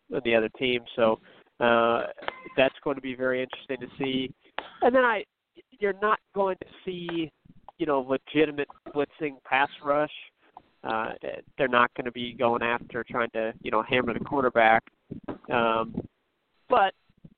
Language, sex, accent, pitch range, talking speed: English, male, American, 125-155 Hz, 150 wpm